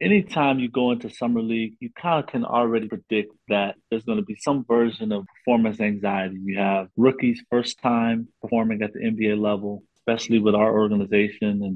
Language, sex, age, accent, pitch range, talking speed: English, male, 30-49, American, 100-115 Hz, 190 wpm